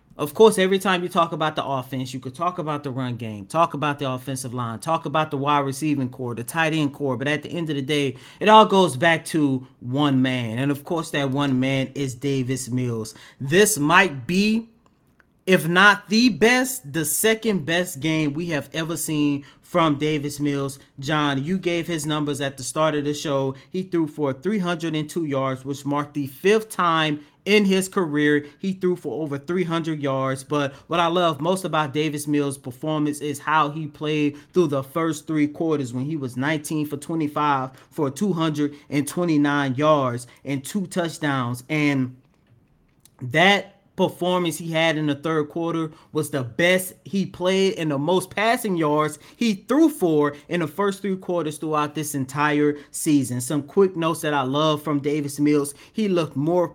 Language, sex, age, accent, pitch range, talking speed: English, male, 30-49, American, 145-180 Hz, 185 wpm